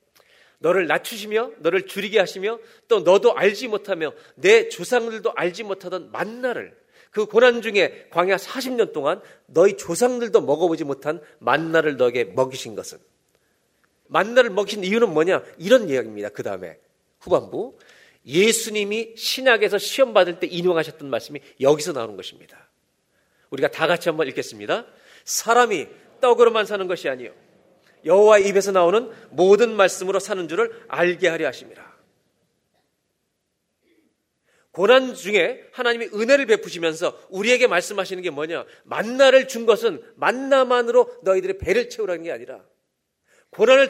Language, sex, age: Korean, male, 40-59